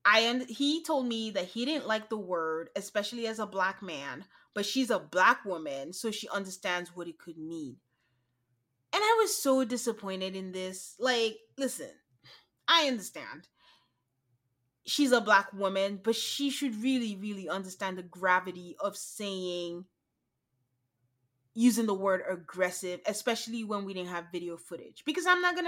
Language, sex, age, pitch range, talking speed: English, female, 20-39, 185-255 Hz, 160 wpm